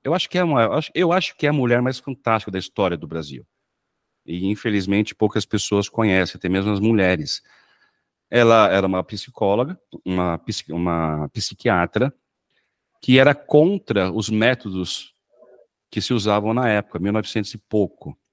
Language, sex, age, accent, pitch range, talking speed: Portuguese, male, 50-69, Brazilian, 100-140 Hz, 155 wpm